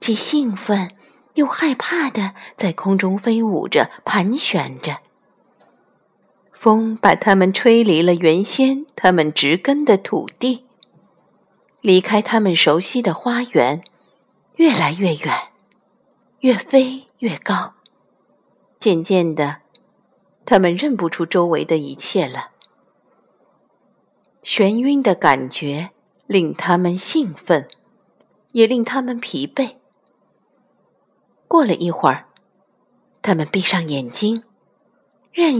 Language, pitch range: Chinese, 170-255 Hz